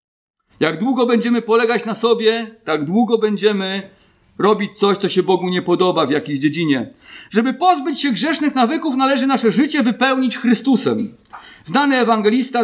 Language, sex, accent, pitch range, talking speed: Polish, male, native, 185-255 Hz, 145 wpm